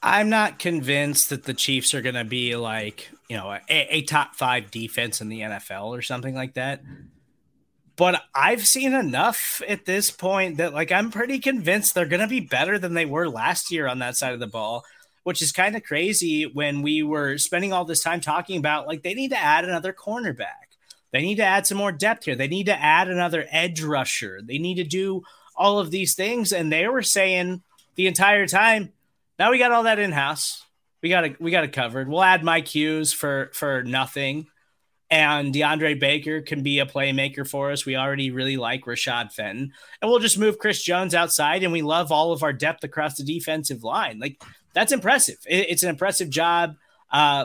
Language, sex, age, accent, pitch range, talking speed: English, male, 30-49, American, 140-190 Hz, 210 wpm